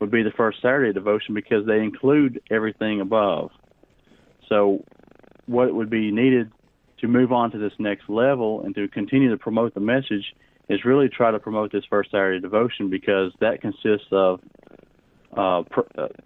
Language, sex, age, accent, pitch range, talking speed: English, male, 40-59, American, 100-115 Hz, 170 wpm